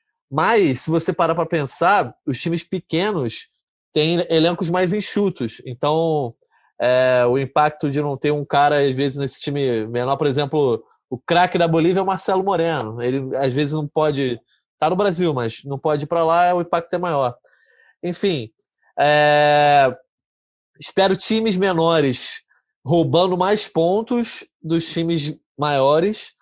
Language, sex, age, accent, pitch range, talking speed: Portuguese, male, 20-39, Brazilian, 140-180 Hz, 150 wpm